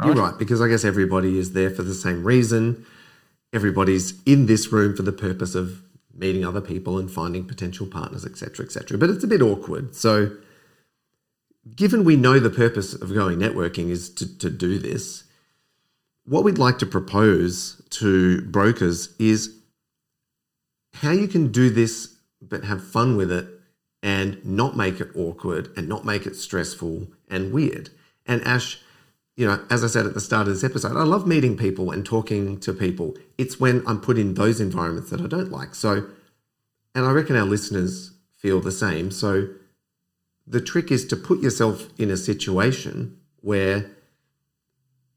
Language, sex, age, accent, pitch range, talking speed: English, male, 40-59, Australian, 95-130 Hz, 175 wpm